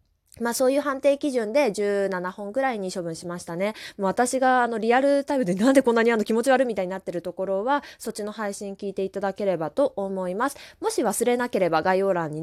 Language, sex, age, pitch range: Japanese, female, 20-39, 190-285 Hz